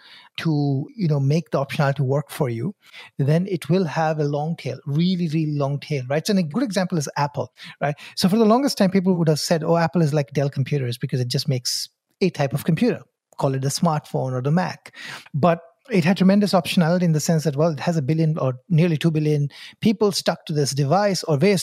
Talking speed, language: 230 wpm, English